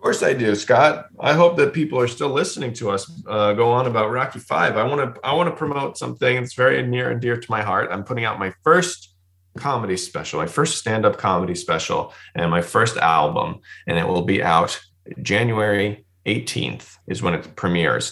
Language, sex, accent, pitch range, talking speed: English, male, American, 90-120 Hz, 210 wpm